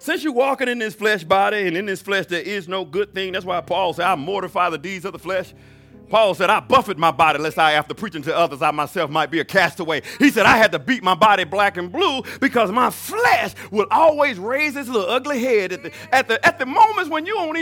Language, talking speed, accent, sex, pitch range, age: English, 250 wpm, American, male, 175-275 Hz, 50-69